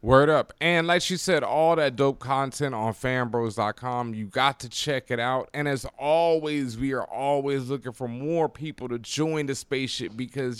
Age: 30-49